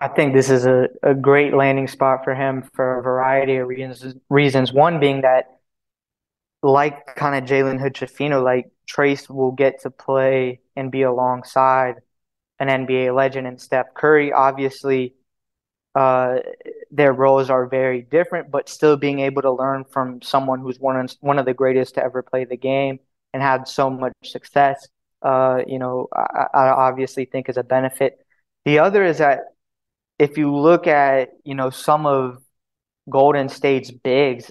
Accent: American